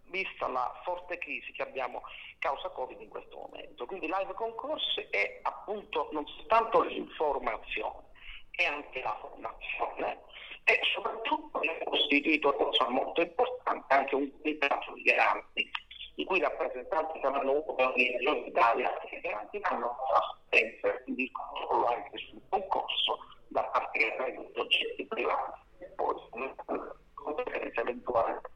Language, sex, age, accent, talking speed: Italian, male, 50-69, native, 130 wpm